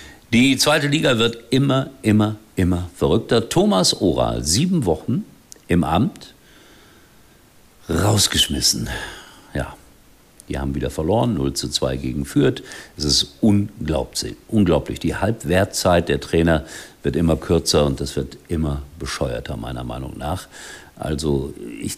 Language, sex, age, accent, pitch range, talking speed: German, male, 50-69, German, 75-105 Hz, 125 wpm